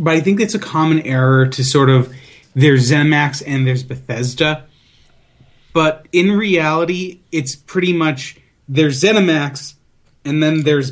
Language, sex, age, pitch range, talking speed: English, male, 30-49, 130-160 Hz, 145 wpm